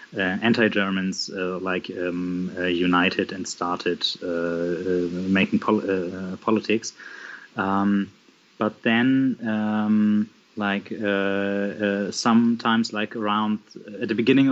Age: 30-49